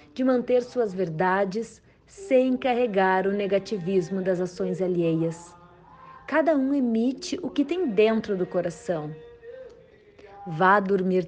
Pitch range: 175-250 Hz